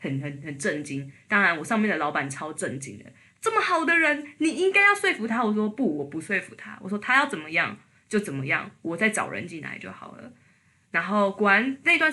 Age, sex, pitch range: 20-39, female, 170-220 Hz